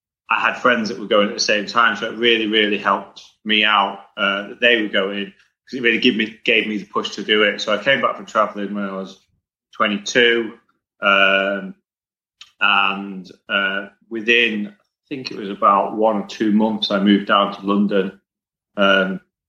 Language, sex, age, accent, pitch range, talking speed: English, male, 30-49, British, 100-120 Hz, 195 wpm